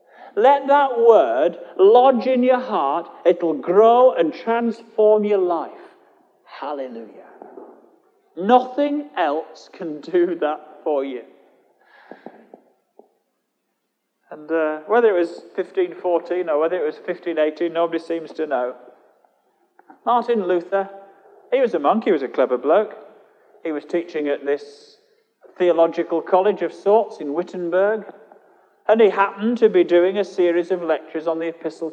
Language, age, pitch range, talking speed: English, 40-59, 170-255 Hz, 135 wpm